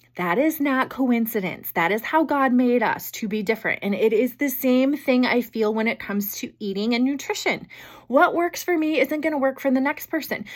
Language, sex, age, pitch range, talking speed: English, female, 20-39, 215-295 Hz, 225 wpm